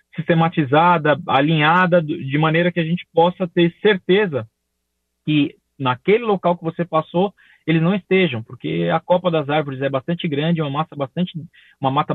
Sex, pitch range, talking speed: male, 140-180 Hz, 155 wpm